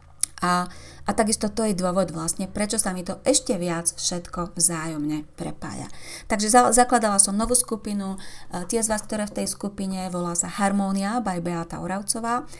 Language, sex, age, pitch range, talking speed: Slovak, female, 30-49, 170-210 Hz, 165 wpm